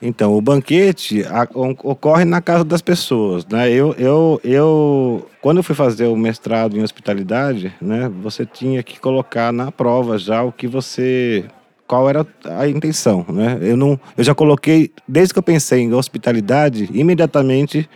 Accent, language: Brazilian, Portuguese